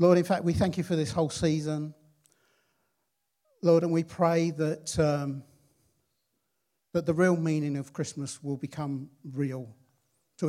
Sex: male